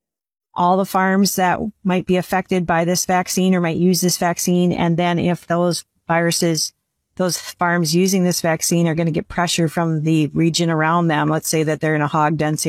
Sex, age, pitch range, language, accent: female, 40-59, 155-175 Hz, Chinese, American